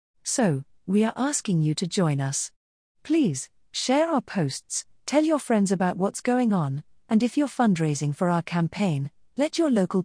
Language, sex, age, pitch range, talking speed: English, female, 40-59, 155-230 Hz, 175 wpm